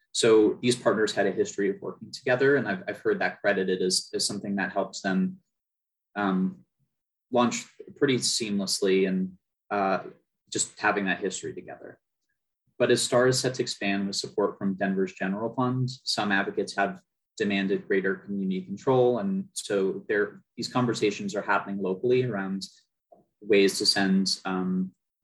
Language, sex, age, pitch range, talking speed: English, male, 20-39, 95-125 Hz, 155 wpm